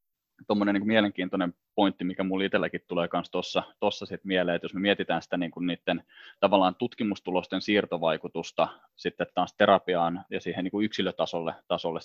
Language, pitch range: Finnish, 85-100 Hz